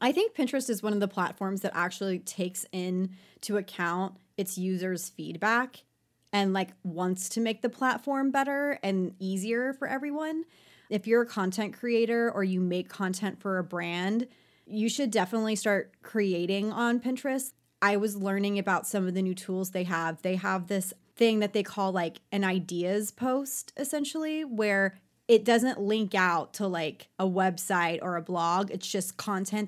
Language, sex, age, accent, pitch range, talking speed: English, female, 20-39, American, 185-225 Hz, 170 wpm